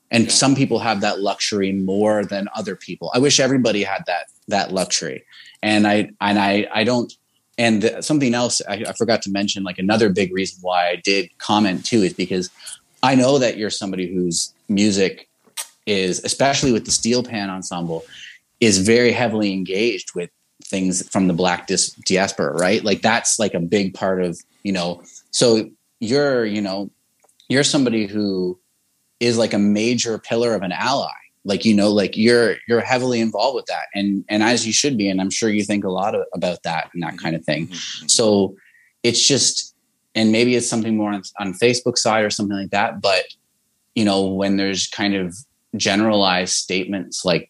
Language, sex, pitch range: English, male, 95-115 Hz